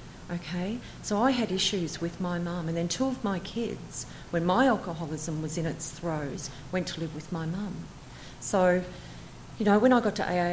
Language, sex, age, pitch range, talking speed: English, female, 40-59, 160-180 Hz, 200 wpm